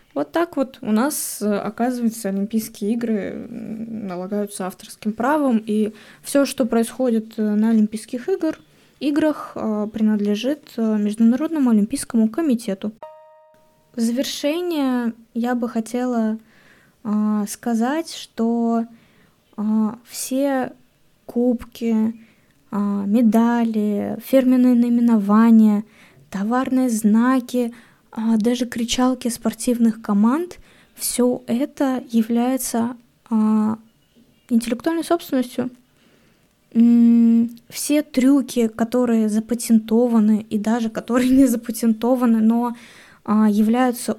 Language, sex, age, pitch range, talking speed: Russian, female, 20-39, 220-255 Hz, 75 wpm